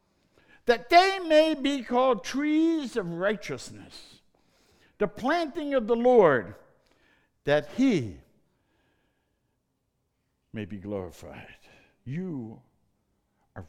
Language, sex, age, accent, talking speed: English, male, 60-79, American, 90 wpm